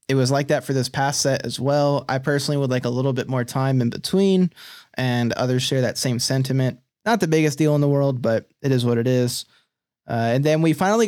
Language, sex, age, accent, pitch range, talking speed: English, male, 20-39, American, 130-165 Hz, 245 wpm